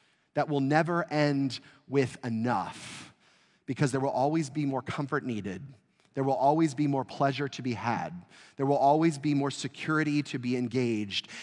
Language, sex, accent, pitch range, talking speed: English, male, American, 135-200 Hz, 170 wpm